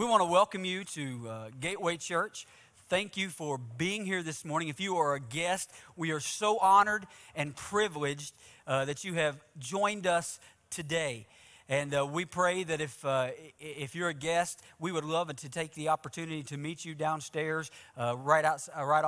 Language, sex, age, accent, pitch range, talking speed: English, male, 40-59, American, 125-175 Hz, 190 wpm